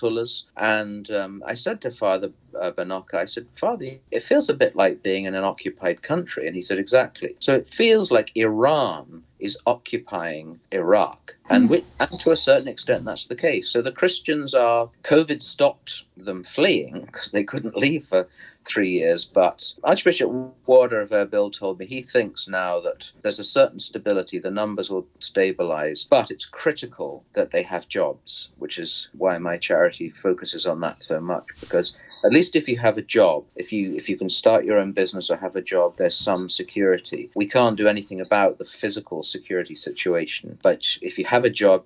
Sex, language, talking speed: male, English, 190 wpm